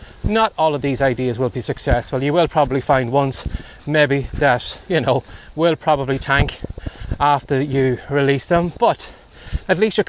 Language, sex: English, male